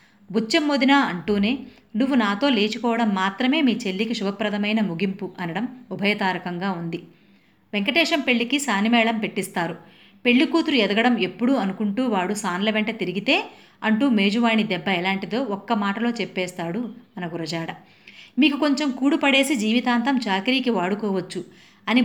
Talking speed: 115 wpm